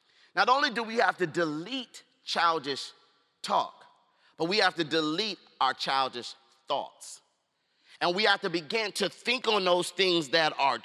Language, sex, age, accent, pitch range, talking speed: English, male, 40-59, American, 155-210 Hz, 160 wpm